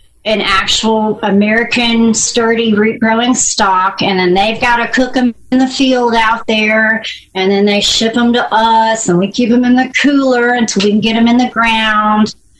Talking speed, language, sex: 195 wpm, English, female